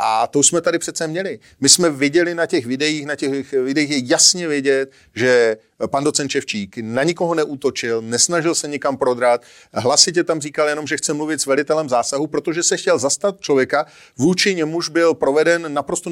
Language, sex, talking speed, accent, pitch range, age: Czech, male, 180 wpm, native, 145-170 Hz, 40-59